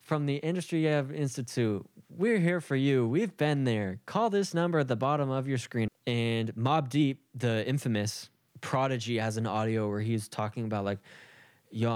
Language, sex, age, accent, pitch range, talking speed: English, male, 10-29, American, 110-130 Hz, 180 wpm